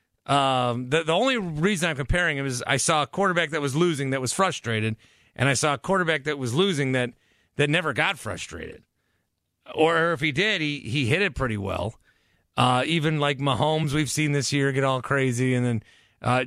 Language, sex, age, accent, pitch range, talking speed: English, male, 40-59, American, 130-165 Hz, 205 wpm